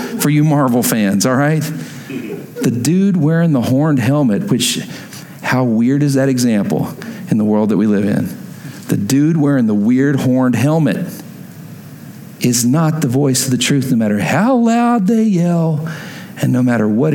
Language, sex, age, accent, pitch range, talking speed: English, male, 50-69, American, 125-180 Hz, 170 wpm